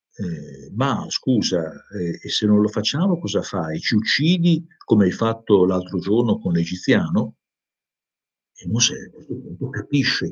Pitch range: 100-160 Hz